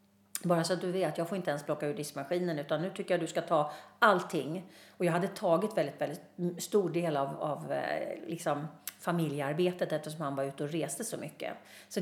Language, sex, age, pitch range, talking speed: Swedish, female, 40-59, 155-190 Hz, 215 wpm